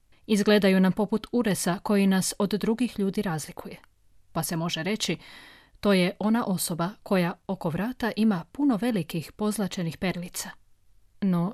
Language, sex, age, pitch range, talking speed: Croatian, female, 30-49, 175-215 Hz, 140 wpm